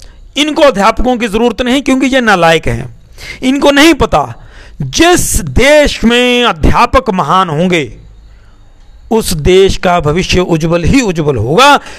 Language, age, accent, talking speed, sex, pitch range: Hindi, 50-69, native, 130 wpm, male, 170-260 Hz